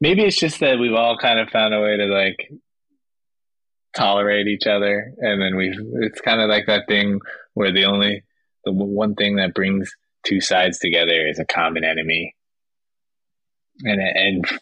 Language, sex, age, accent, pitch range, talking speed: English, male, 20-39, American, 95-110 Hz, 170 wpm